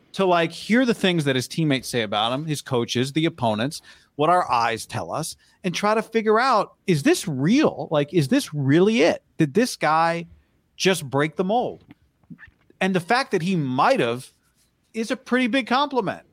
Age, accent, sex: 40-59, American, male